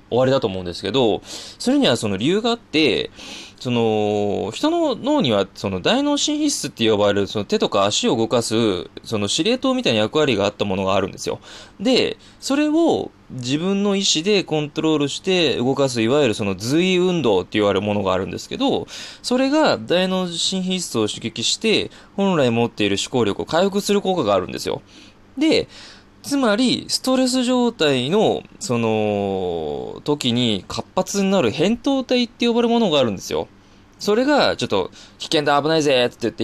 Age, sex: 20-39, male